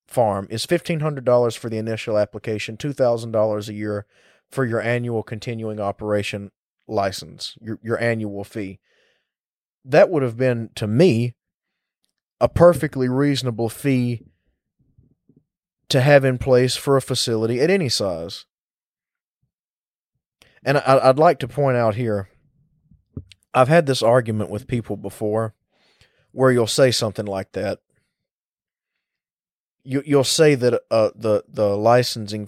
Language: English